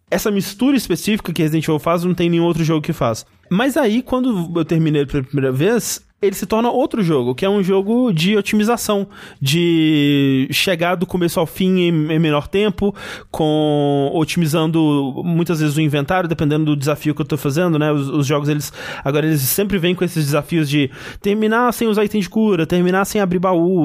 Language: Portuguese